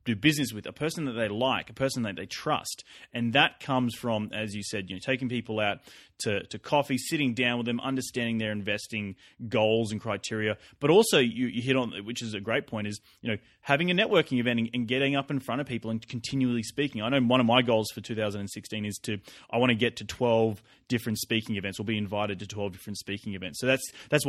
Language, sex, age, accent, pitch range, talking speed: English, male, 30-49, Australian, 105-130 Hz, 250 wpm